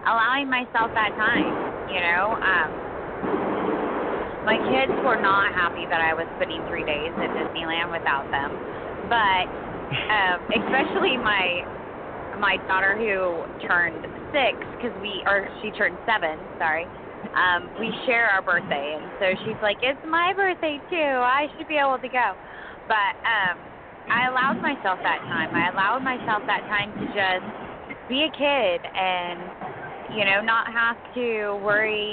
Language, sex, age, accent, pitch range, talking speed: English, female, 20-39, American, 190-255 Hz, 150 wpm